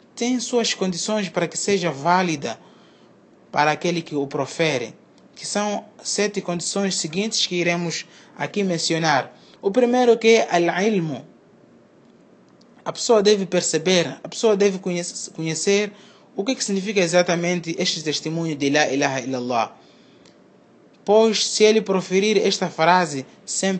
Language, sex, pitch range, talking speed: Portuguese, male, 160-205 Hz, 135 wpm